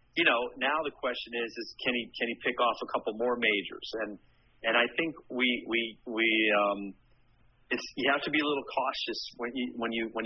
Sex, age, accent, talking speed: male, 40-59, American, 220 wpm